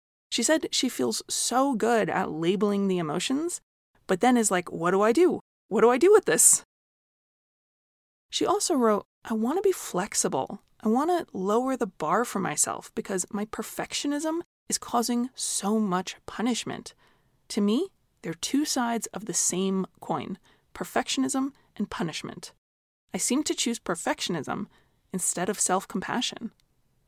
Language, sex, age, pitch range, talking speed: English, female, 20-39, 195-285 Hz, 150 wpm